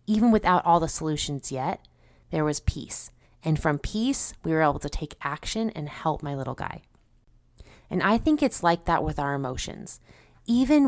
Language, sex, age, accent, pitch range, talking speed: English, female, 20-39, American, 150-190 Hz, 180 wpm